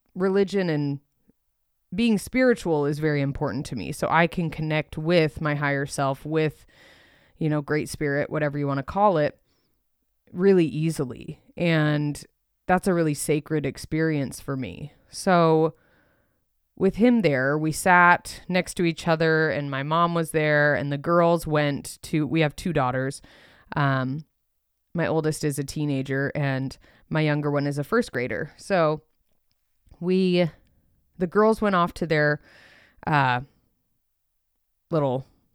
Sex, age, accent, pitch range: female, 20-39, American, 140-175 Hz